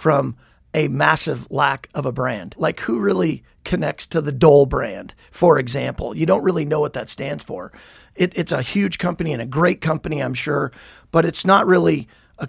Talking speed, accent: 190 wpm, American